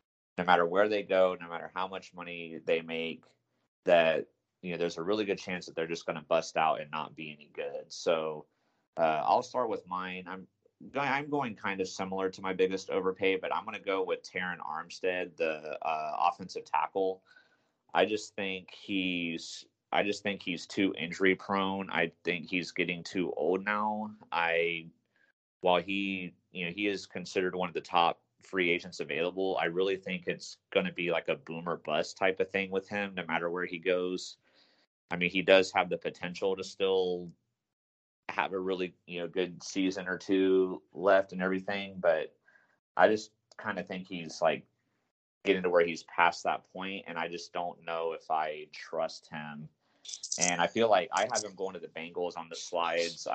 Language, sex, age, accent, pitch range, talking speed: English, male, 30-49, American, 85-95 Hz, 195 wpm